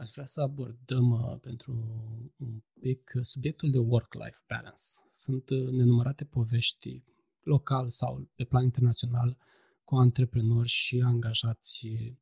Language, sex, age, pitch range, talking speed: Romanian, male, 20-39, 115-130 Hz, 125 wpm